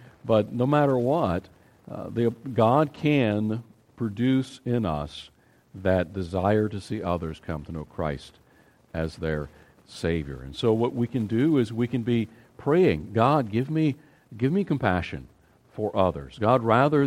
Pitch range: 95-125 Hz